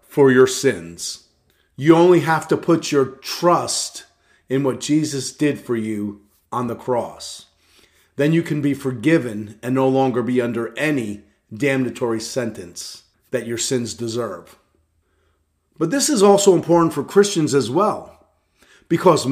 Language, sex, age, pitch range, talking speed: English, male, 40-59, 115-165 Hz, 145 wpm